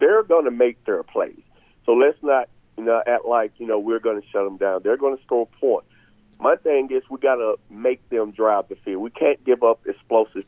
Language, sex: English, male